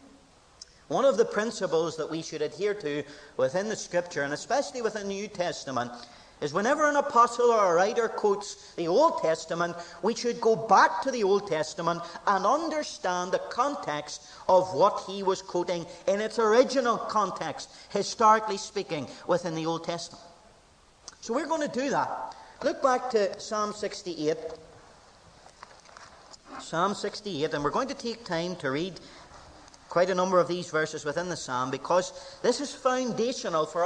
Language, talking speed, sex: English, 160 wpm, male